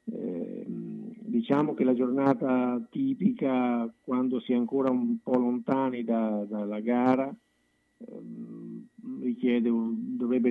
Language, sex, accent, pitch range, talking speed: Italian, male, native, 110-130 Hz, 115 wpm